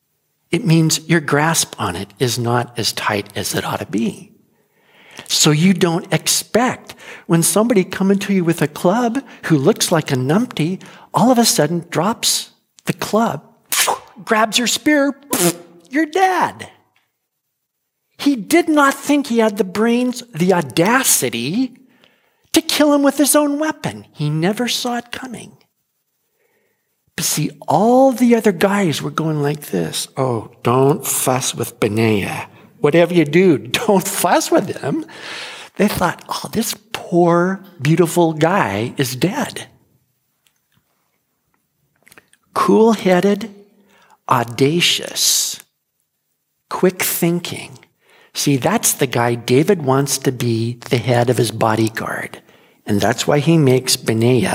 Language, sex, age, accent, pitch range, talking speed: English, male, 50-69, American, 140-230 Hz, 130 wpm